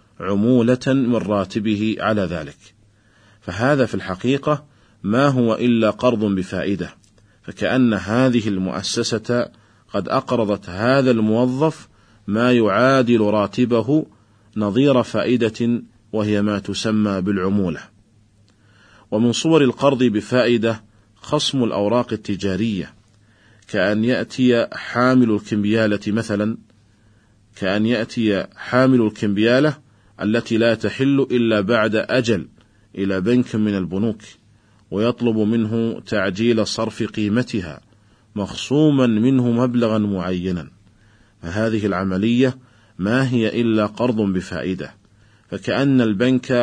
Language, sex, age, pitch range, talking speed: Arabic, male, 40-59, 105-120 Hz, 95 wpm